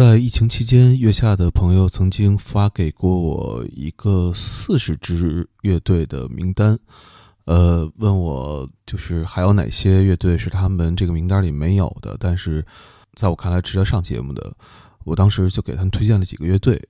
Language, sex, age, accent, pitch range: Chinese, male, 20-39, native, 85-105 Hz